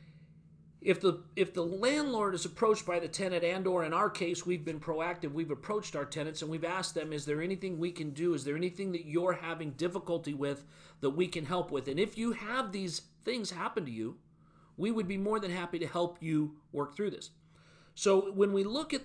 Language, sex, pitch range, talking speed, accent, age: English, male, 160-200 Hz, 225 wpm, American, 40-59